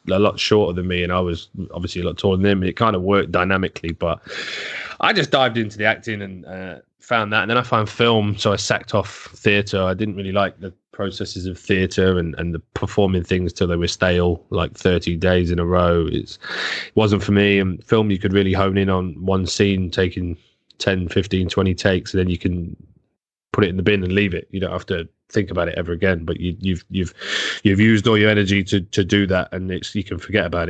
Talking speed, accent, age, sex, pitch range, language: 240 wpm, British, 20-39, male, 90-100 Hz, English